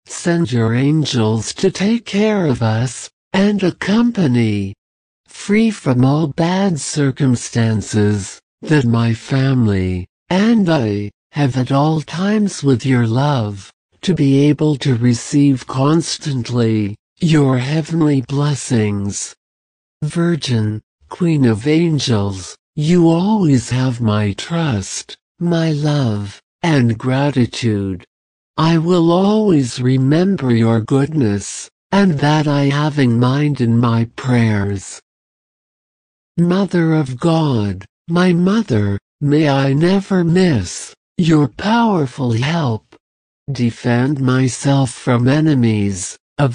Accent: American